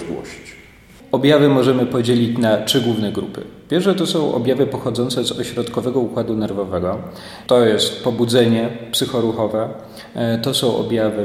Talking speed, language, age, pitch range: 125 wpm, Polish, 40-59, 110-120 Hz